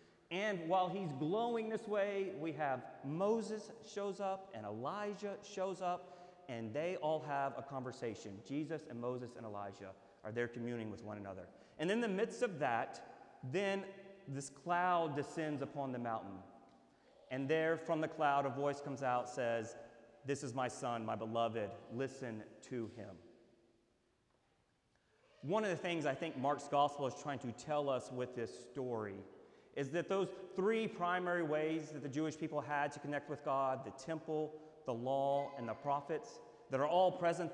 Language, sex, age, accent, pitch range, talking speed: English, male, 30-49, American, 130-170 Hz, 170 wpm